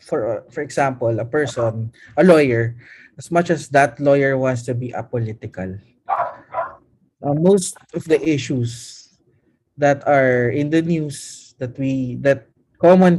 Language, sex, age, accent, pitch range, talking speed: Filipino, male, 20-39, native, 125-165 Hz, 135 wpm